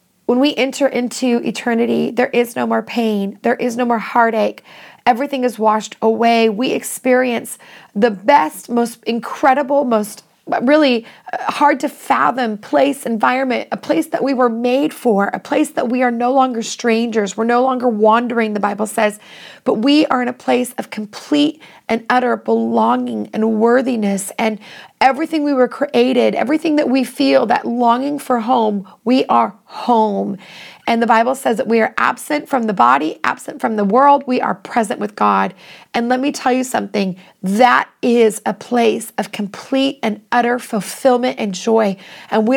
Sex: female